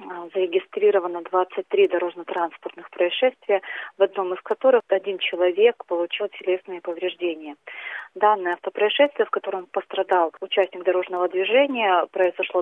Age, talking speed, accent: 30-49, 105 wpm, native